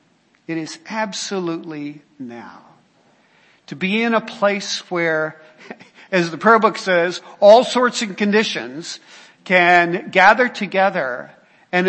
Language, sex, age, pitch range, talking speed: English, male, 50-69, 170-225 Hz, 115 wpm